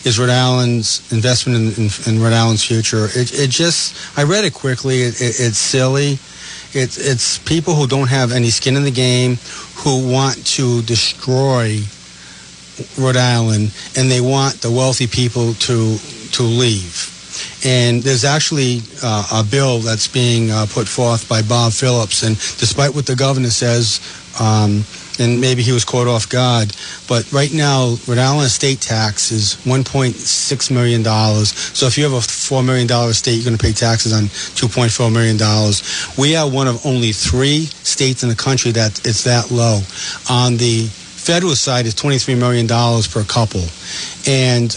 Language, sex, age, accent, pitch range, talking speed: English, male, 40-59, American, 115-130 Hz, 170 wpm